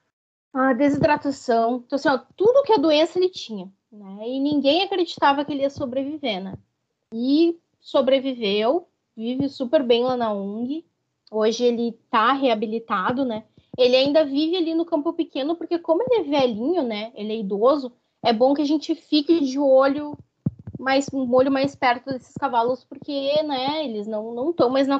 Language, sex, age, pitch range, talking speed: Portuguese, female, 20-39, 225-275 Hz, 175 wpm